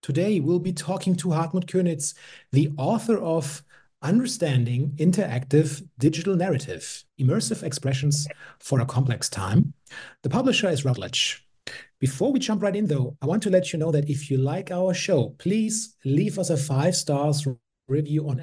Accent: German